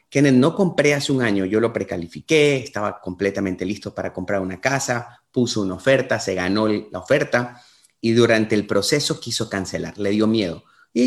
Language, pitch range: Spanish, 100-130 Hz